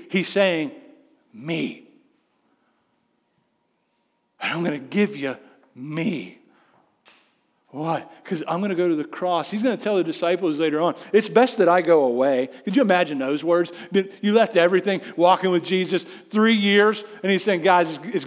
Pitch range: 165-225 Hz